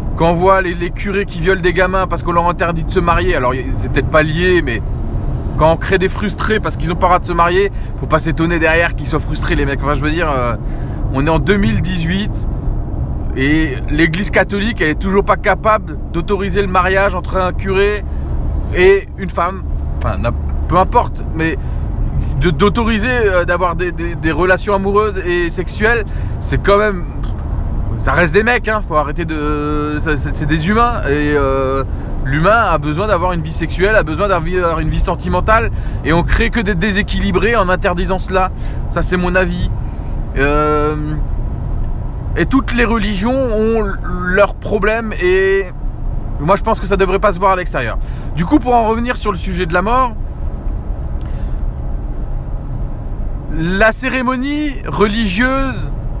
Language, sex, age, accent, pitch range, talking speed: French, male, 20-39, French, 135-205 Hz, 170 wpm